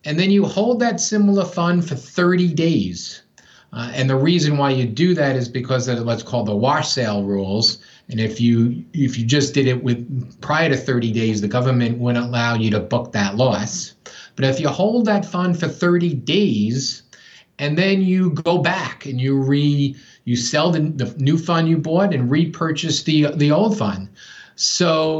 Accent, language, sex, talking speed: American, English, male, 195 wpm